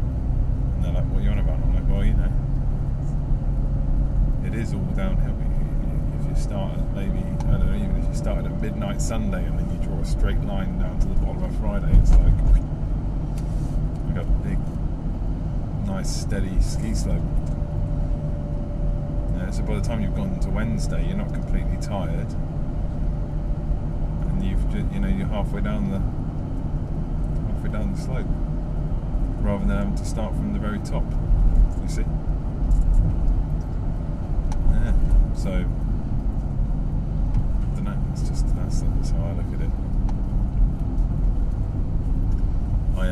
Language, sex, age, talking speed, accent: English, male, 30-49, 150 wpm, British